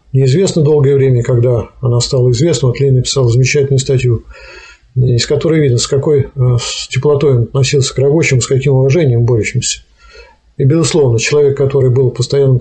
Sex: male